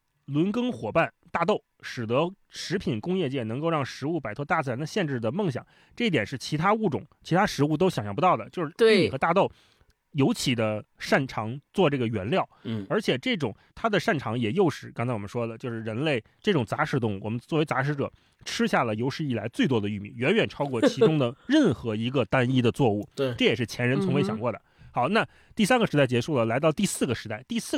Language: Chinese